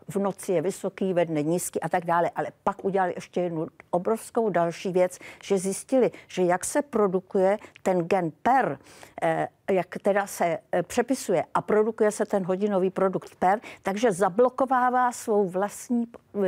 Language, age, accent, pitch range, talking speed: Czech, 50-69, native, 180-220 Hz, 155 wpm